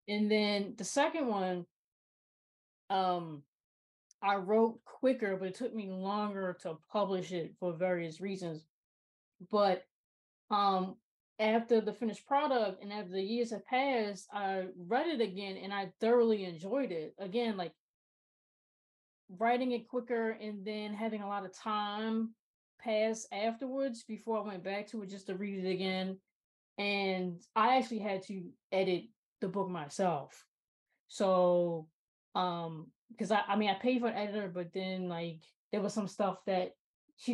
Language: English